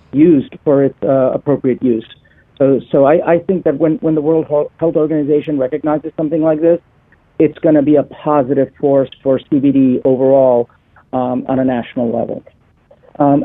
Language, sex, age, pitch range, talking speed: English, male, 50-69, 135-155 Hz, 170 wpm